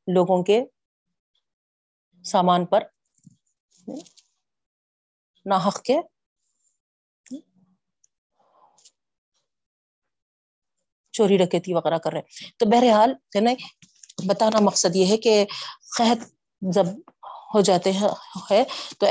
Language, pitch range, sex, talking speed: Urdu, 180-220 Hz, female, 90 wpm